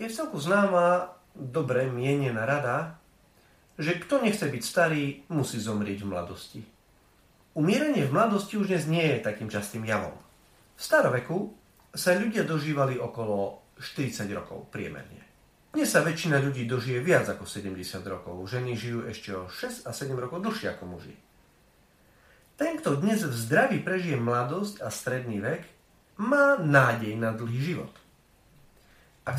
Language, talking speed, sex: Slovak, 145 wpm, male